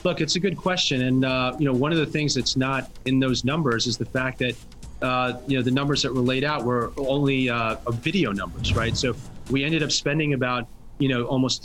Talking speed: 240 wpm